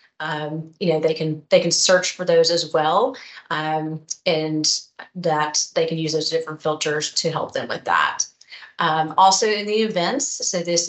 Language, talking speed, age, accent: English, 180 wpm, 30-49, American